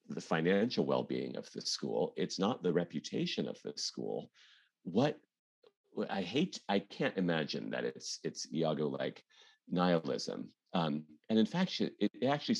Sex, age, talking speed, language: male, 40-59, 150 wpm, English